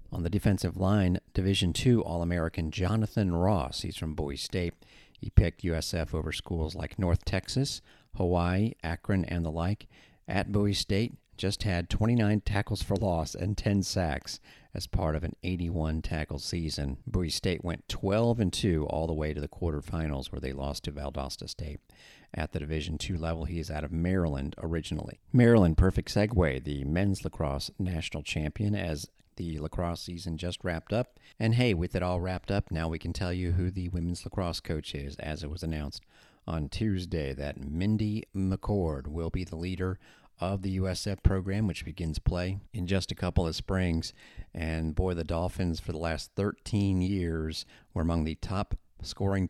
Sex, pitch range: male, 80-100 Hz